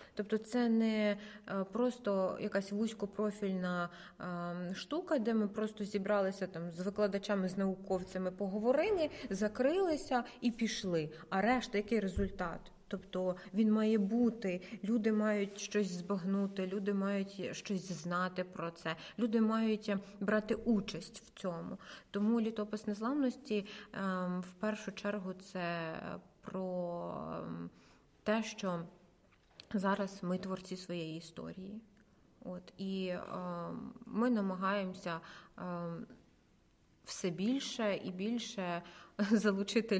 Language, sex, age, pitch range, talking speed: Ukrainian, female, 20-39, 185-215 Hz, 105 wpm